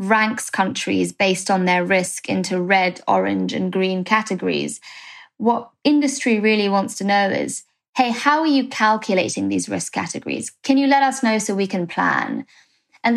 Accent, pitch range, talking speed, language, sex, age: British, 195-255 Hz, 170 wpm, English, female, 20-39